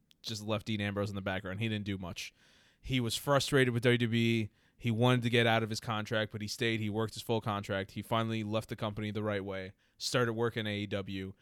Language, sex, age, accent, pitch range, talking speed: English, male, 20-39, American, 105-115 Hz, 225 wpm